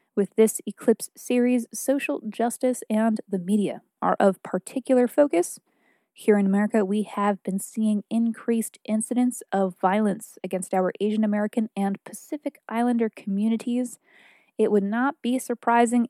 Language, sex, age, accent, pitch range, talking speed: English, female, 20-39, American, 200-240 Hz, 140 wpm